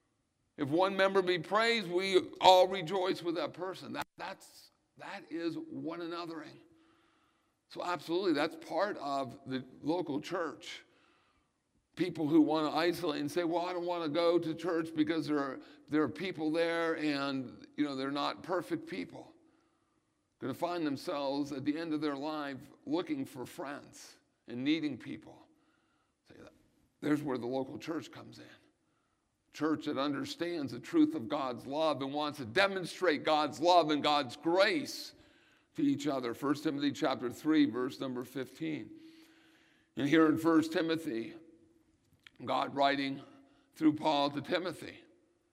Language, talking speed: English, 150 wpm